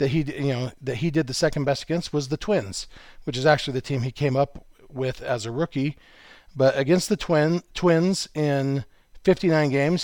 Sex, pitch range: male, 135-175 Hz